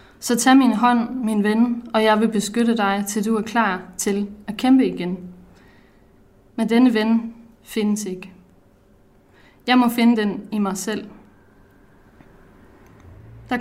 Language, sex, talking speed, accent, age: Danish, female, 140 wpm, native, 20-39